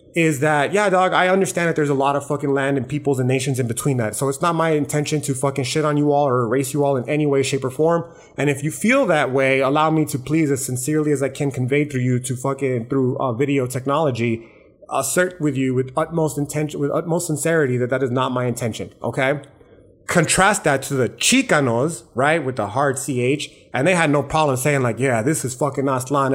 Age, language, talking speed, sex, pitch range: 30-49, English, 235 wpm, male, 130-160 Hz